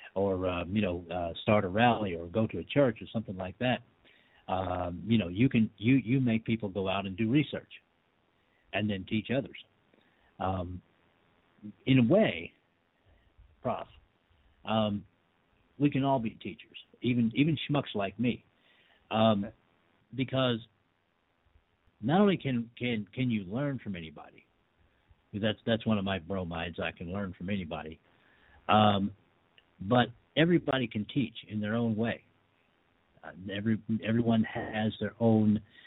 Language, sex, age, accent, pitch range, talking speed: English, male, 50-69, American, 85-115 Hz, 145 wpm